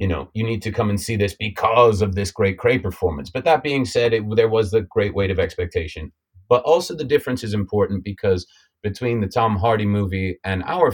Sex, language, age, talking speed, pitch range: male, English, 30-49, 225 wpm, 90-110 Hz